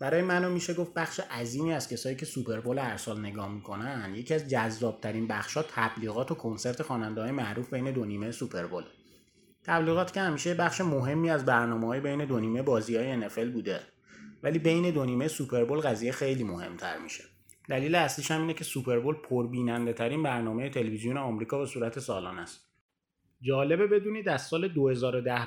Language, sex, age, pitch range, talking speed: Persian, male, 30-49, 120-155 Hz, 170 wpm